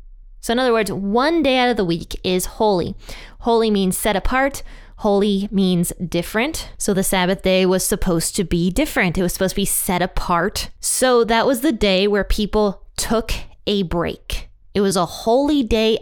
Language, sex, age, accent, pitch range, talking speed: English, female, 20-39, American, 185-230 Hz, 185 wpm